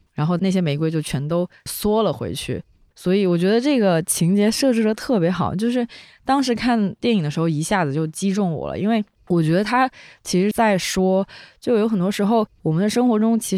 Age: 20-39